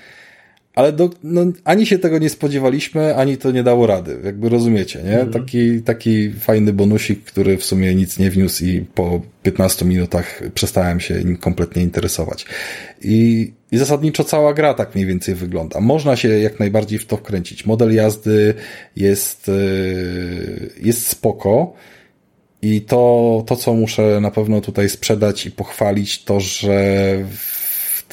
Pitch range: 95-110 Hz